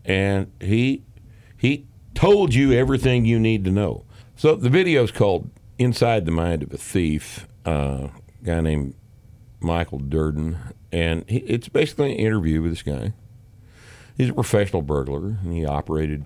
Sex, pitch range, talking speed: male, 85-120 Hz, 160 wpm